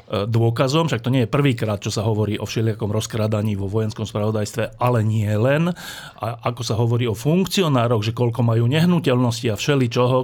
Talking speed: 165 wpm